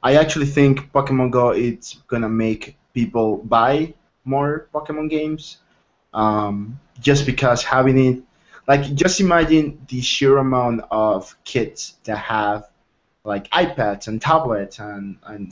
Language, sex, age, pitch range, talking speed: English, male, 20-39, 115-145 Hz, 130 wpm